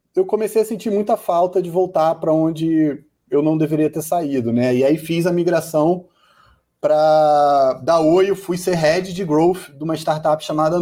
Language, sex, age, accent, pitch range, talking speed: Portuguese, male, 30-49, Brazilian, 130-160 Hz, 190 wpm